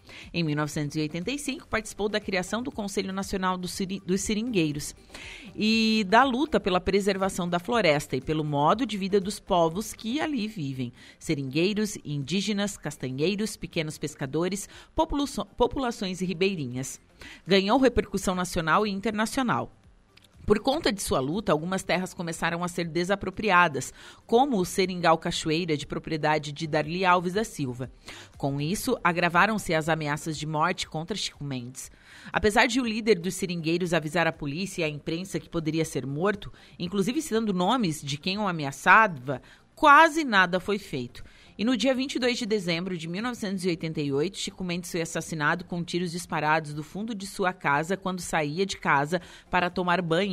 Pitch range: 155-210 Hz